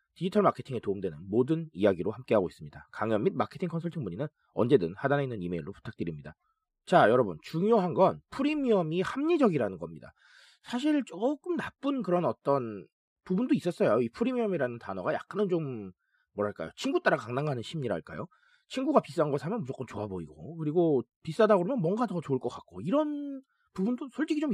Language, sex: Korean, male